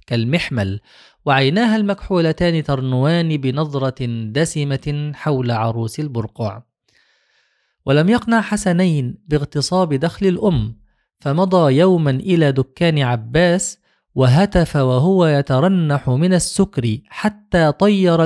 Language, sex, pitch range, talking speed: Arabic, male, 140-185 Hz, 90 wpm